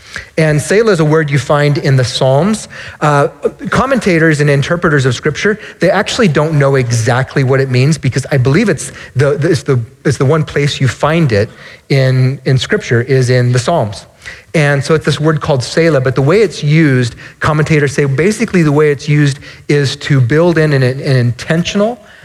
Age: 30-49